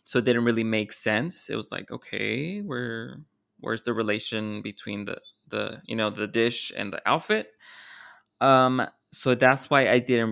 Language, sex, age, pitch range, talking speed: English, male, 20-39, 110-140 Hz, 175 wpm